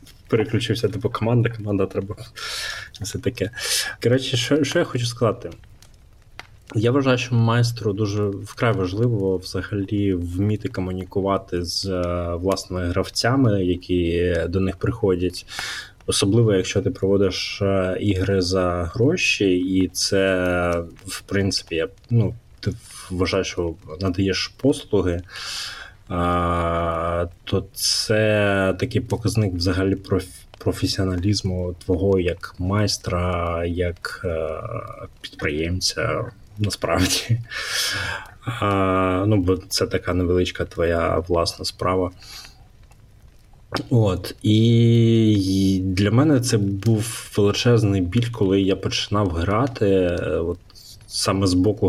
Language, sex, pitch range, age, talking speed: Ukrainian, male, 90-110 Hz, 20-39, 100 wpm